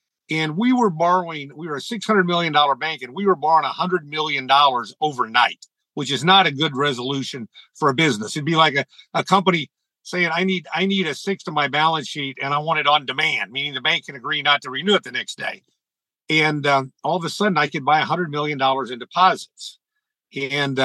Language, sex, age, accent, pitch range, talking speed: English, male, 50-69, American, 140-180 Hz, 215 wpm